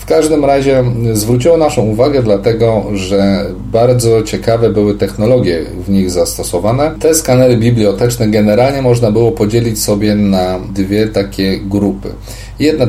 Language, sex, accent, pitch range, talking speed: Polish, male, native, 95-120 Hz, 130 wpm